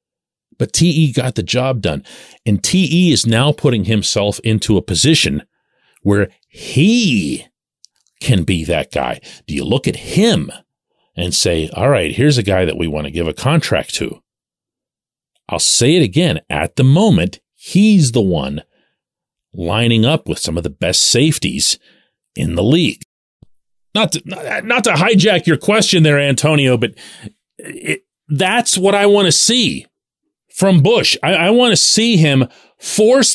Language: English